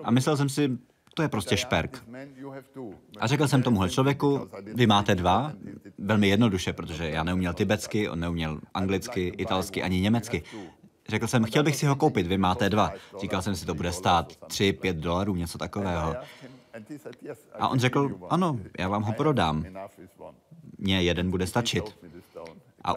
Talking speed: 160 wpm